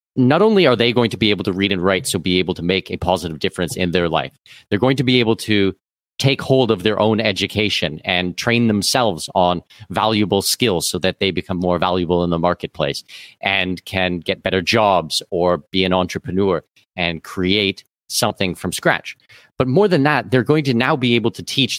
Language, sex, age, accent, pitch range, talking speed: English, male, 40-59, American, 95-130 Hz, 210 wpm